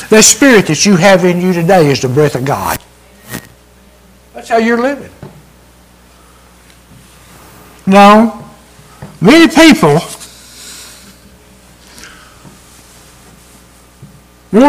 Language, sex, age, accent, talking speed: English, male, 60-79, American, 85 wpm